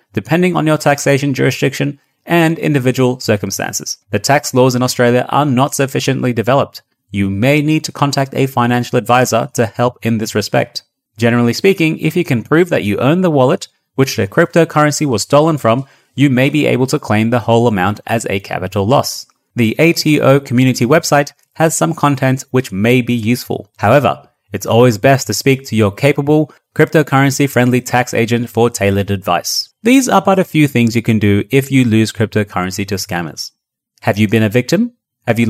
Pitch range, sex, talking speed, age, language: 115-150 Hz, male, 185 wpm, 30-49, English